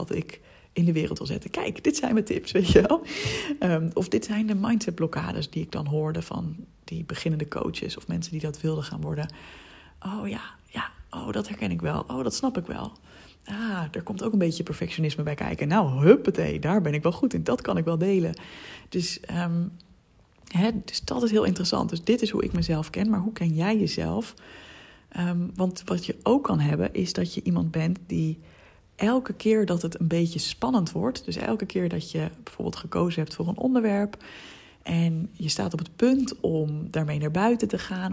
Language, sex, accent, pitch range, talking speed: Dutch, female, Dutch, 160-210 Hz, 210 wpm